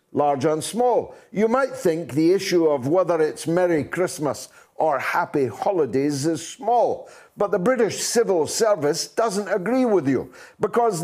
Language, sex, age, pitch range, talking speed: English, male, 60-79, 190-260 Hz, 150 wpm